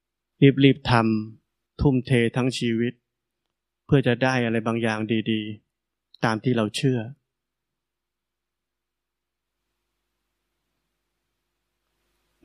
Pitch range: 115-125 Hz